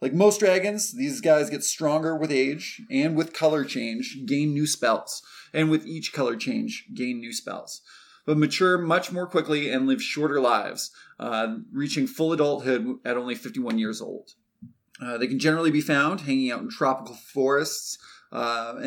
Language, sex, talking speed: English, male, 170 wpm